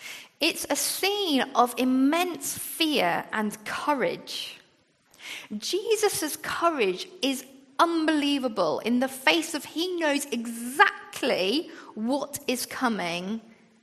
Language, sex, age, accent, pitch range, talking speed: English, female, 40-59, British, 220-310 Hz, 95 wpm